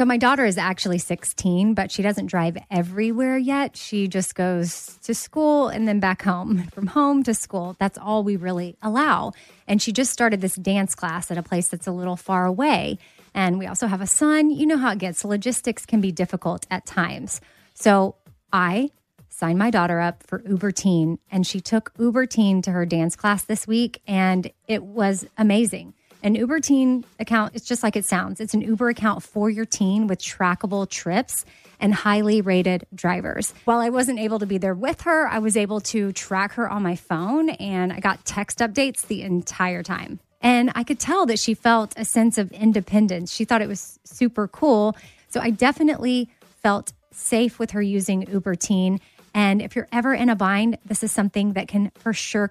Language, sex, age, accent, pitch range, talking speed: English, female, 30-49, American, 190-230 Hz, 200 wpm